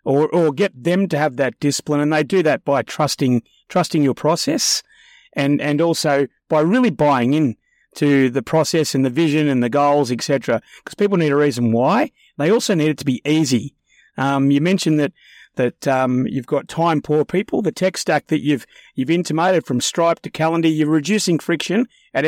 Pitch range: 145-180 Hz